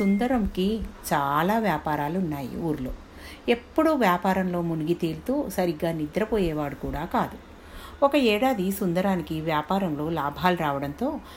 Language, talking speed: Telugu, 100 wpm